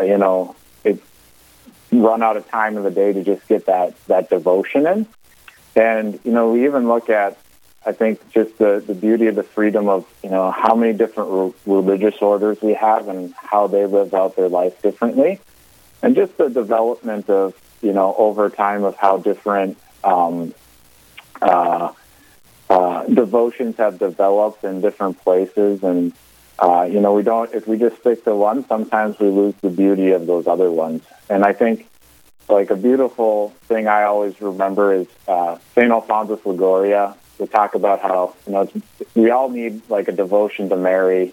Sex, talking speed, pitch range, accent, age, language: male, 175 wpm, 95-110 Hz, American, 30-49, English